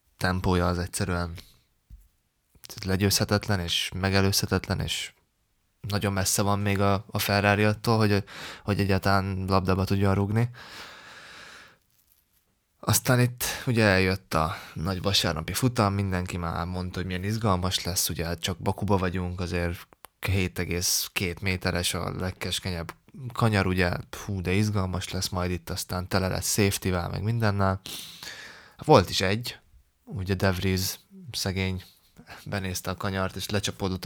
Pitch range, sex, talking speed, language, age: 90-100 Hz, male, 125 wpm, Hungarian, 20-39